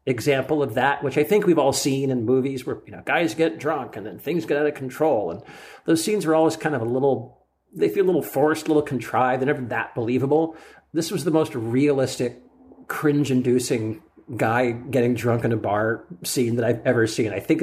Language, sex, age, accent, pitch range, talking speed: English, male, 50-69, American, 125-160 Hz, 220 wpm